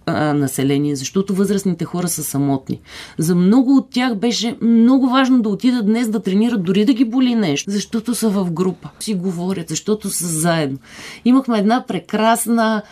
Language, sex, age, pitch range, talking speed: Bulgarian, female, 30-49, 175-230 Hz, 165 wpm